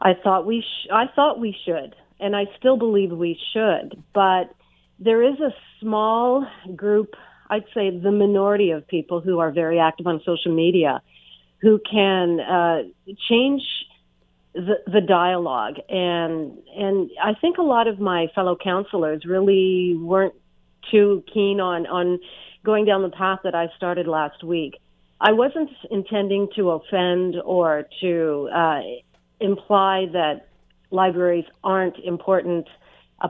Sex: female